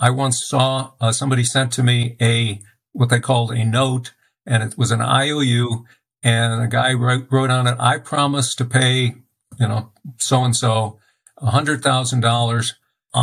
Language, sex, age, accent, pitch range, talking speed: English, male, 50-69, American, 120-140 Hz, 165 wpm